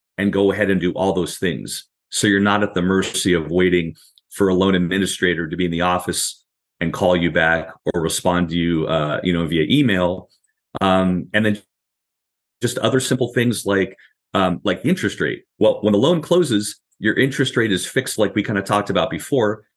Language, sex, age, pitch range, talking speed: English, male, 40-59, 95-120 Hz, 205 wpm